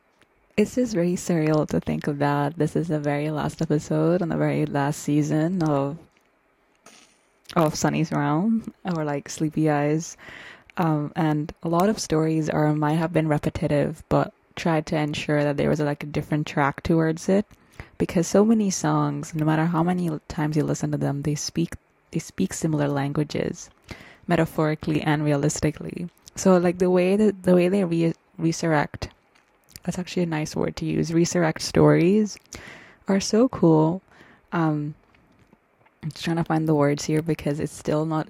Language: English